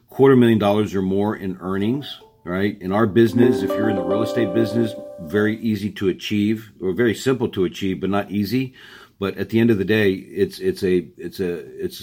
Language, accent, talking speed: English, American, 215 wpm